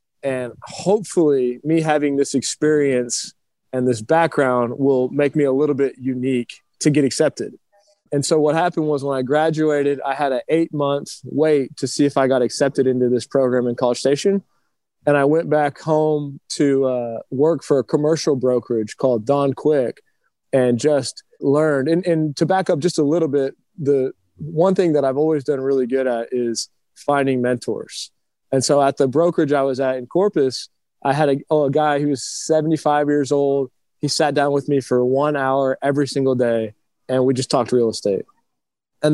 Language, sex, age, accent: English, male, 20-39, American